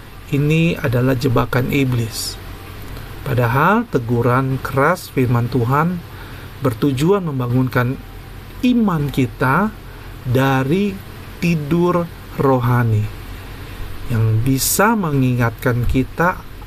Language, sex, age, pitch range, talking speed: Indonesian, male, 40-59, 110-145 Hz, 70 wpm